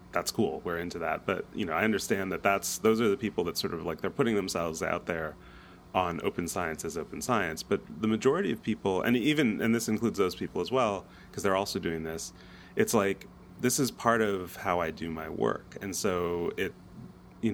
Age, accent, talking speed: 30-49, American, 220 wpm